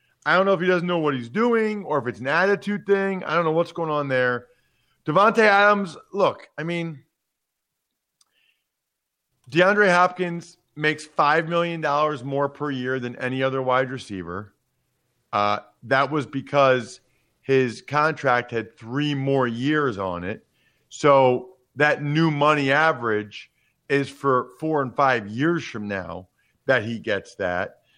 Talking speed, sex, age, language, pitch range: 150 wpm, male, 40-59, English, 120-155 Hz